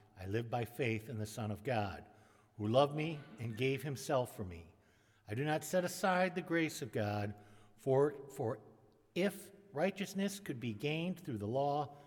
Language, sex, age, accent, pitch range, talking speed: English, male, 60-79, American, 105-145 Hz, 180 wpm